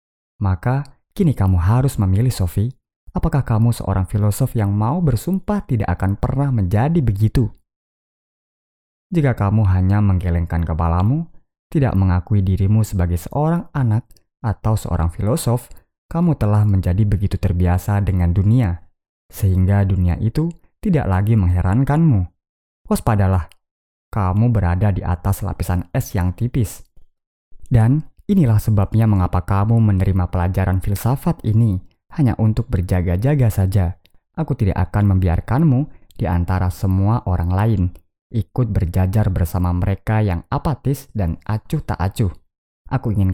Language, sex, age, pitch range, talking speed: Indonesian, male, 20-39, 90-120 Hz, 120 wpm